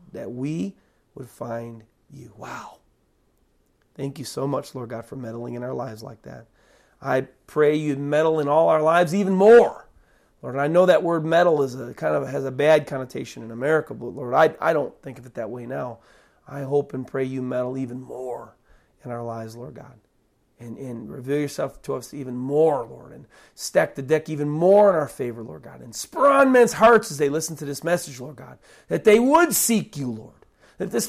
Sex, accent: male, American